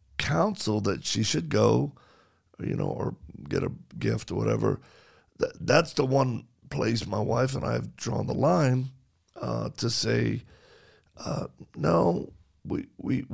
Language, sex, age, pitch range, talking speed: English, male, 50-69, 95-135 Hz, 145 wpm